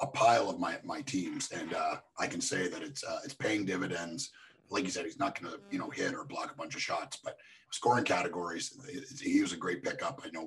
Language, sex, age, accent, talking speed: English, male, 30-49, American, 250 wpm